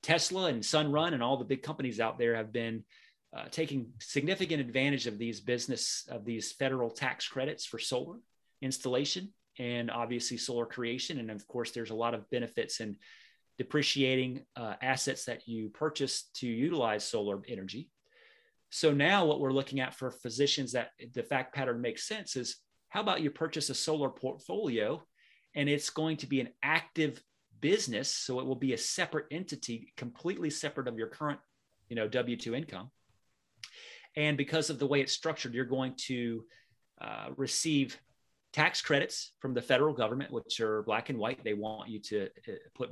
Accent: American